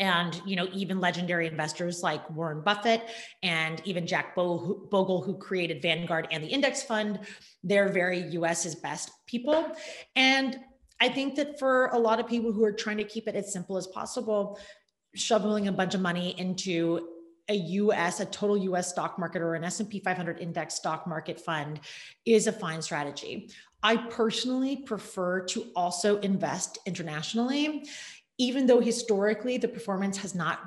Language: English